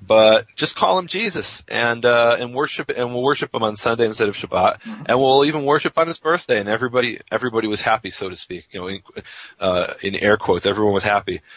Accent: American